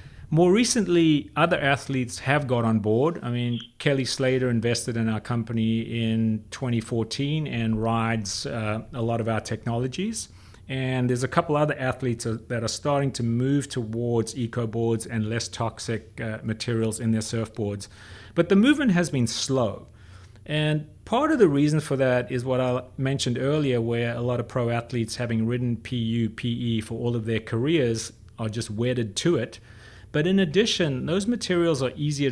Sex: male